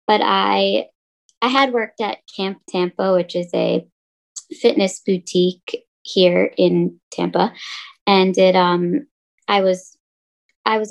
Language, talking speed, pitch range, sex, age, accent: English, 115 wpm, 180-220 Hz, female, 20-39, American